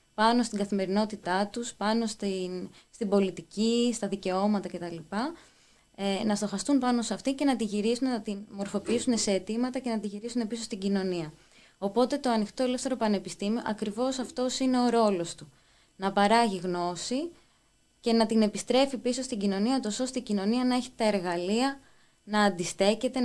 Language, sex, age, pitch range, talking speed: Greek, female, 20-39, 195-245 Hz, 155 wpm